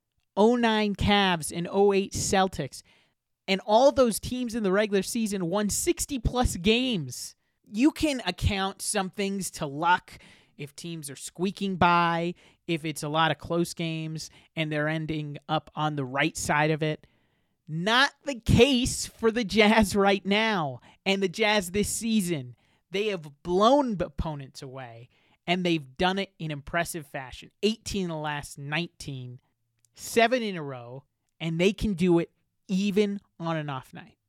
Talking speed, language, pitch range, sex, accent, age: 155 wpm, English, 150-200 Hz, male, American, 30-49